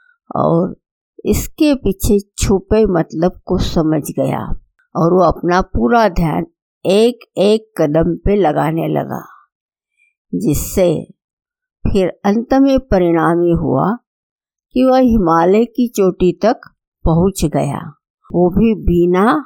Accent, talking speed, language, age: native, 115 wpm, Hindi, 60-79